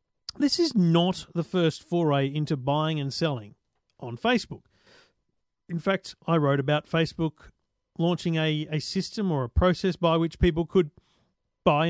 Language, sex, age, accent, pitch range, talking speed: English, male, 40-59, Australian, 145-185 Hz, 150 wpm